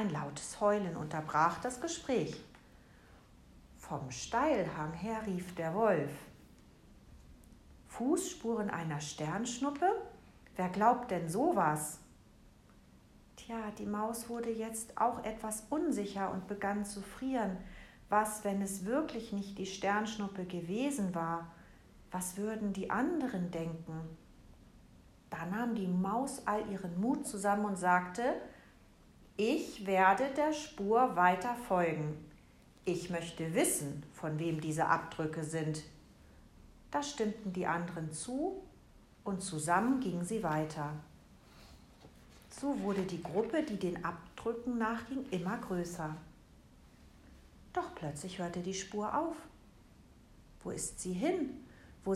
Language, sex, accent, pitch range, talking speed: German, female, German, 170-230 Hz, 115 wpm